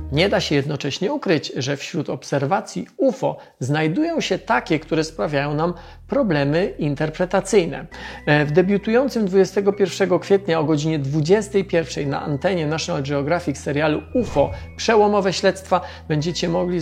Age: 40-59